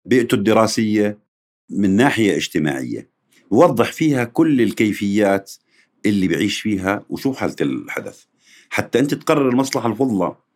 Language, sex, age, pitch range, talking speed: Arabic, male, 50-69, 95-125 Hz, 115 wpm